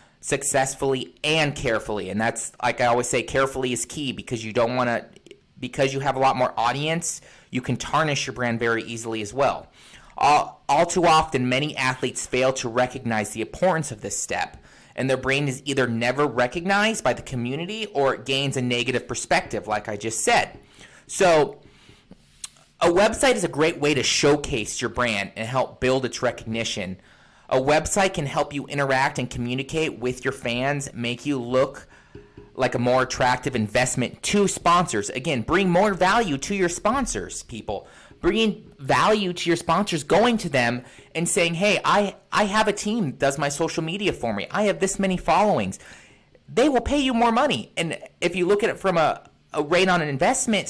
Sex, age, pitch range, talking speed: male, 30-49, 125-175 Hz, 190 wpm